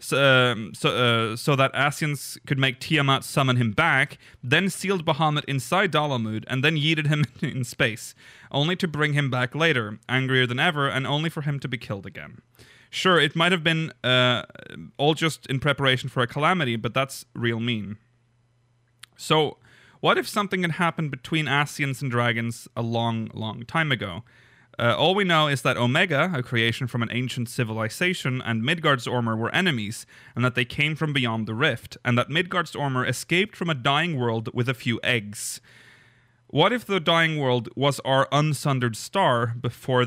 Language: English